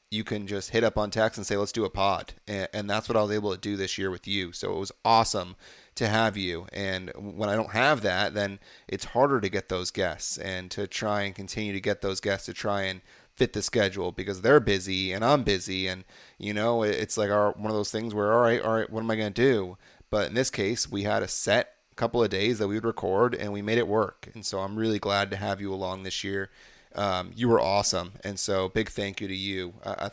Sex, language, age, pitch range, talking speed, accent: male, English, 30-49, 95-110 Hz, 260 wpm, American